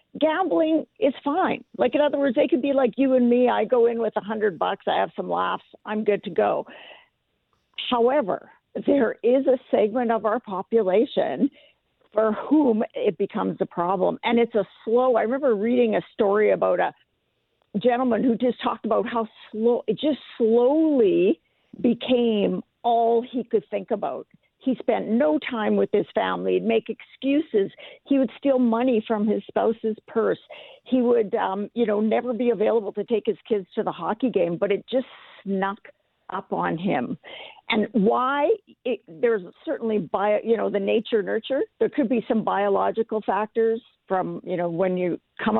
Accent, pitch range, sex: American, 215-260 Hz, female